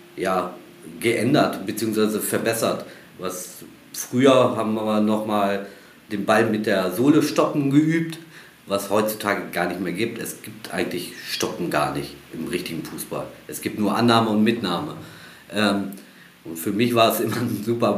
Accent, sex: German, male